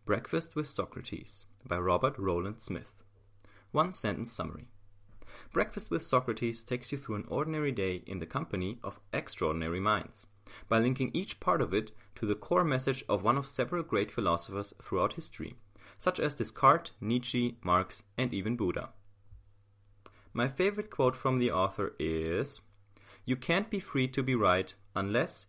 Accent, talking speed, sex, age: German, 155 wpm, male, 30-49